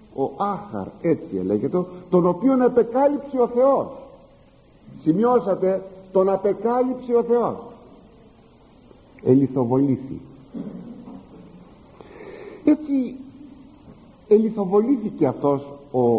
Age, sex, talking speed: 50-69, male, 70 wpm